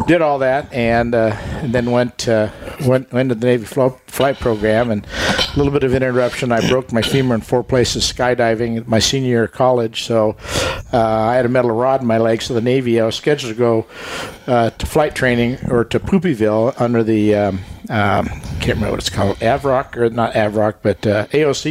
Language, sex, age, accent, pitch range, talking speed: English, male, 60-79, American, 115-130 Hz, 215 wpm